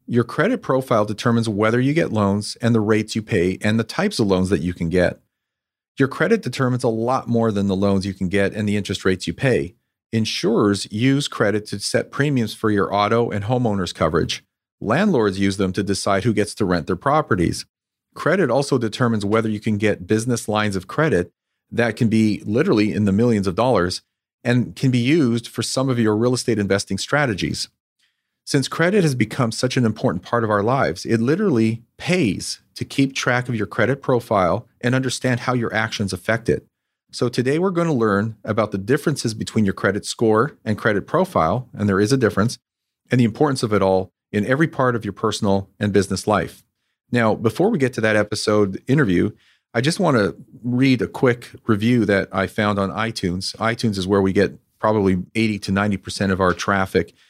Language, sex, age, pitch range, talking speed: English, male, 40-59, 100-120 Hz, 200 wpm